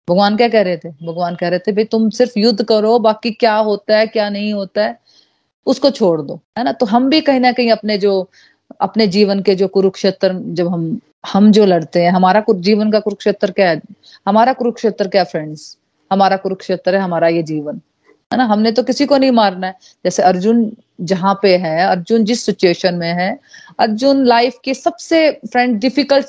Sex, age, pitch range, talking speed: female, 30-49, 190-240 Hz, 205 wpm